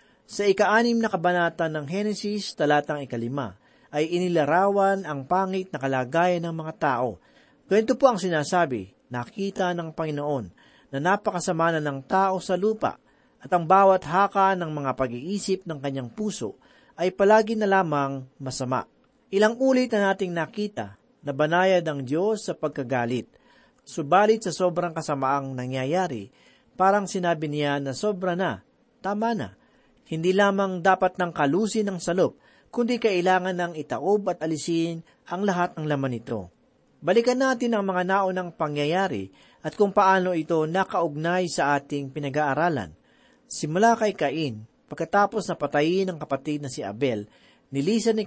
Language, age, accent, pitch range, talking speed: Filipino, 40-59, native, 145-195 Hz, 140 wpm